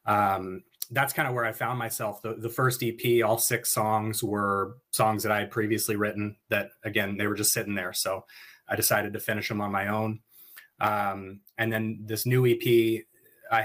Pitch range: 105-115 Hz